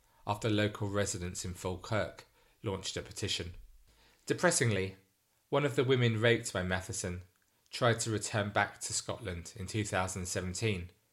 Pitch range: 95-115 Hz